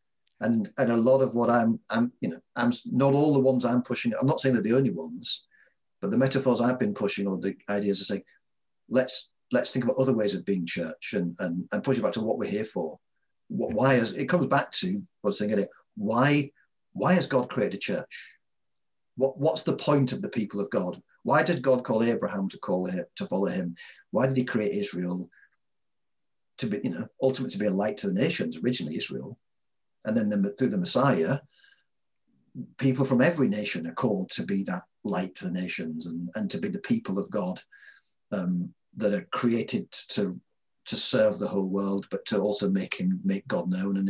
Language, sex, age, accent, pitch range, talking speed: English, male, 40-59, British, 100-135 Hz, 215 wpm